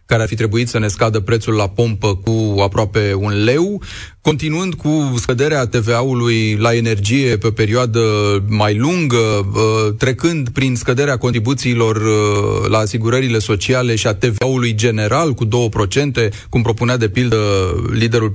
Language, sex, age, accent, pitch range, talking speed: Romanian, male, 30-49, native, 110-140 Hz, 140 wpm